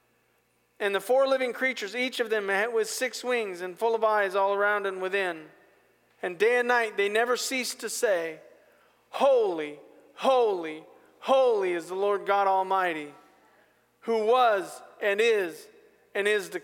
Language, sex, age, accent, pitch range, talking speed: English, male, 40-59, American, 190-240 Hz, 155 wpm